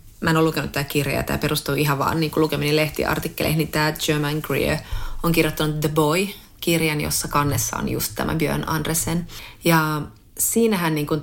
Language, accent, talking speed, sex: Finnish, native, 170 wpm, female